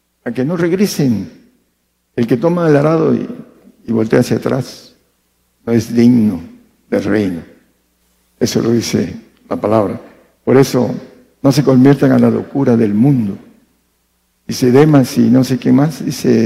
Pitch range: 85-130 Hz